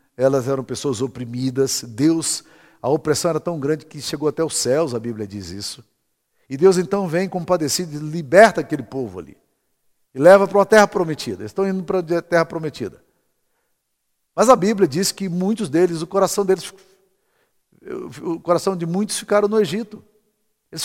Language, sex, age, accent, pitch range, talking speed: Portuguese, male, 50-69, Brazilian, 150-200 Hz, 175 wpm